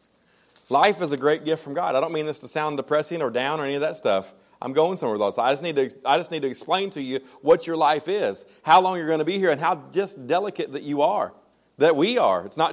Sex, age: male, 40-59